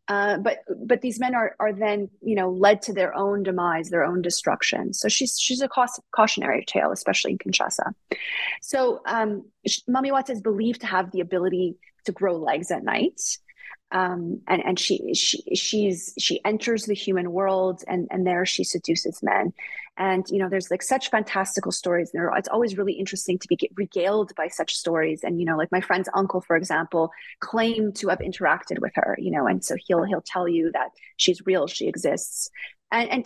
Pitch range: 190-250 Hz